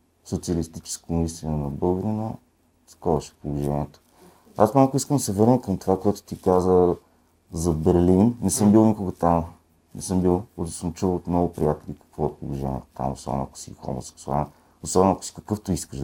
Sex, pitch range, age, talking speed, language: male, 75-90 Hz, 50-69, 175 wpm, Bulgarian